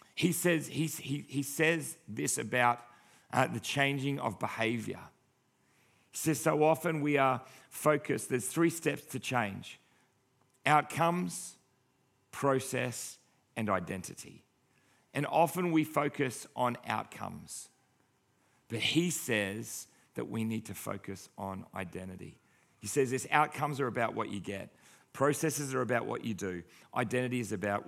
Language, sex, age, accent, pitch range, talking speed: English, male, 40-59, Australian, 100-135 Hz, 130 wpm